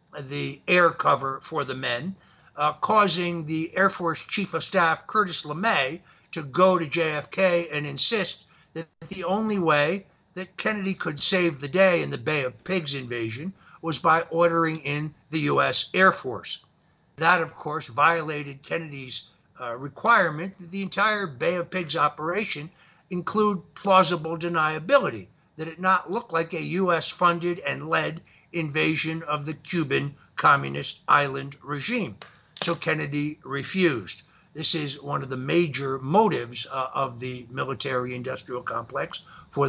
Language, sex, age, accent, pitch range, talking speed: English, male, 60-79, American, 145-180 Hz, 145 wpm